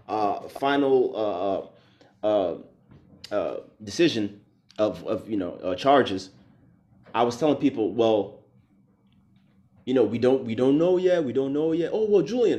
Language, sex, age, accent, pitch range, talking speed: English, male, 30-49, American, 110-185 Hz, 155 wpm